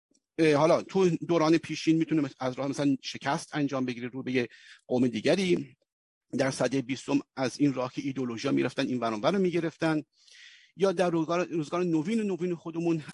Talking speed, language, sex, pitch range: 155 wpm, Persian, male, 135-170 Hz